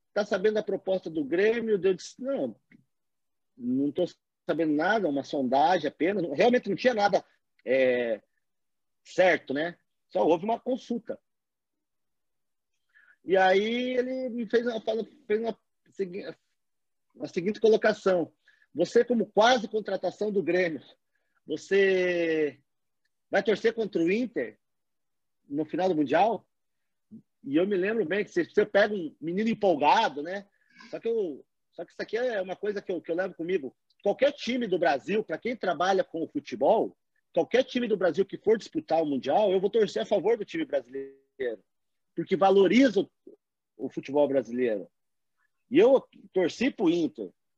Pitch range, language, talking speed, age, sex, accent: 180-245 Hz, Portuguese, 150 wpm, 40-59, male, Brazilian